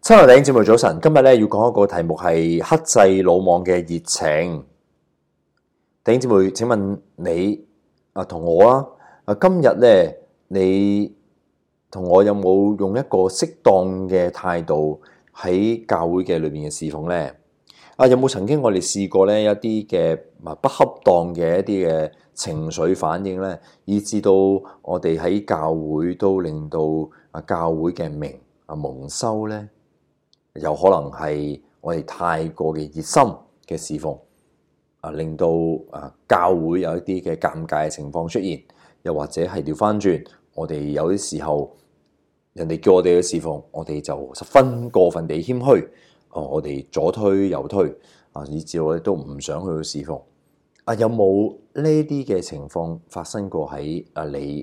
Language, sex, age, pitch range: Chinese, male, 20-39, 80-100 Hz